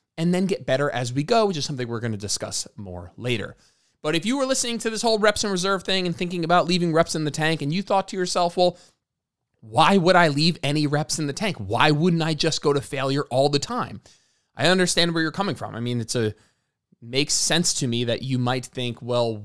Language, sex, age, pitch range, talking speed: English, male, 20-39, 120-170 Hz, 245 wpm